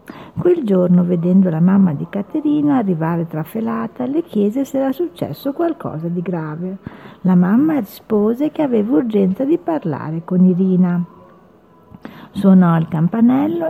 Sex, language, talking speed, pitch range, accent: female, Italian, 130 wpm, 175-235 Hz, native